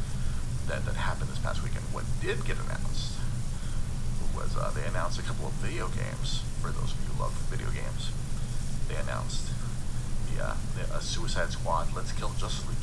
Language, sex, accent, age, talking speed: English, male, American, 40-59, 180 wpm